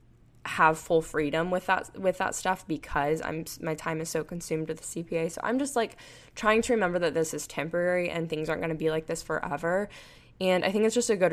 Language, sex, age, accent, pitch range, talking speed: English, female, 10-29, American, 155-180 Hz, 240 wpm